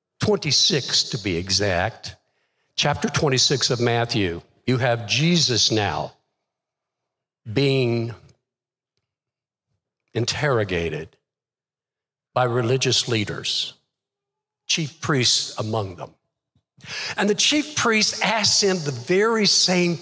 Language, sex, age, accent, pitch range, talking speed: English, male, 60-79, American, 115-160 Hz, 90 wpm